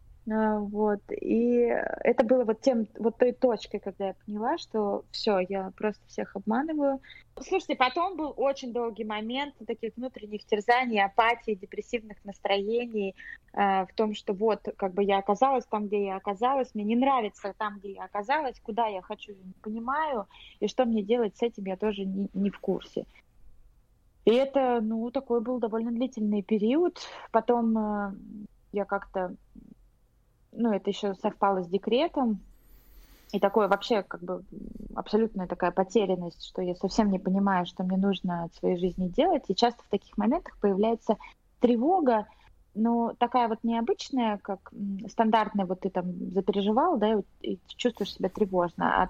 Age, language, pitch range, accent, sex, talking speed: 20-39, Russian, 200-235 Hz, native, female, 160 wpm